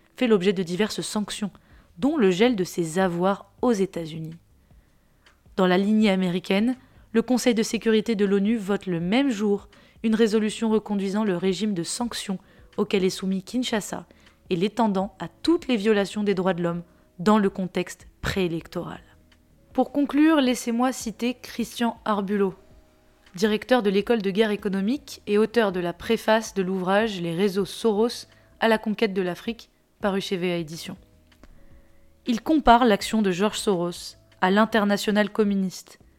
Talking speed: 155 wpm